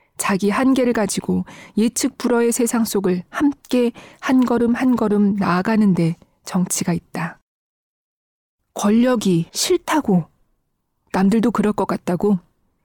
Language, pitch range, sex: Korean, 190-245 Hz, female